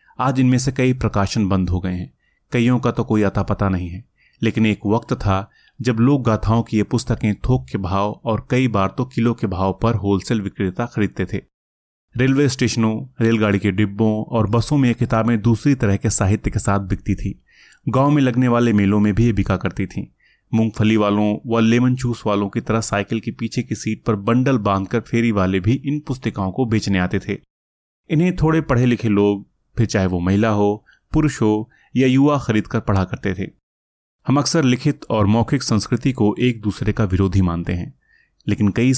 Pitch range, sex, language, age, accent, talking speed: 100-125 Hz, male, Hindi, 30-49, native, 200 wpm